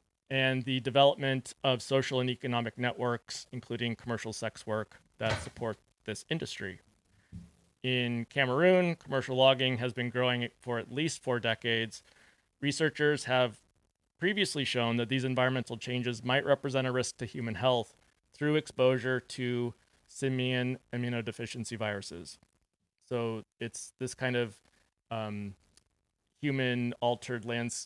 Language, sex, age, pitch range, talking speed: English, male, 30-49, 115-130 Hz, 120 wpm